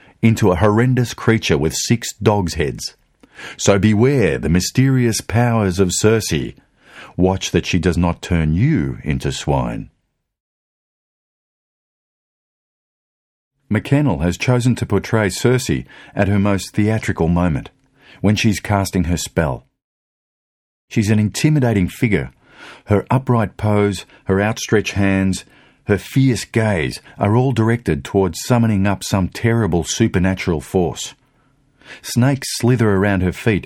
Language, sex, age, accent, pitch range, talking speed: English, male, 50-69, Australian, 90-120 Hz, 120 wpm